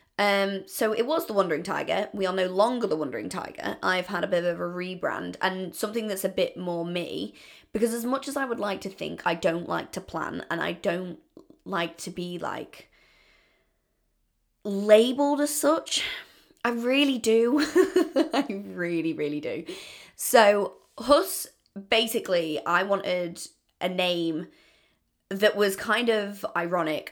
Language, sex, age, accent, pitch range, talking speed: English, female, 20-39, British, 180-235 Hz, 155 wpm